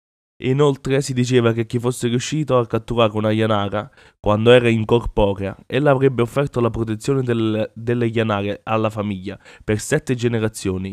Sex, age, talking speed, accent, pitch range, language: male, 20-39, 155 wpm, Italian, 105-125 Hz, English